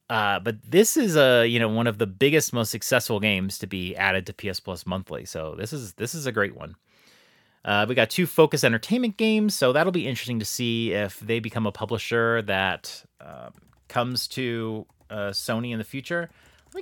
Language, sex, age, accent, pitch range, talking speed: English, male, 30-49, American, 105-140 Hz, 205 wpm